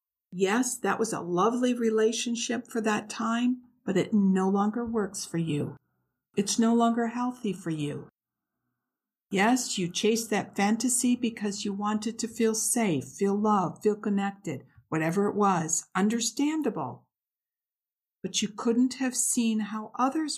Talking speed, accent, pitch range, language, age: 140 wpm, American, 180-235 Hz, English, 60-79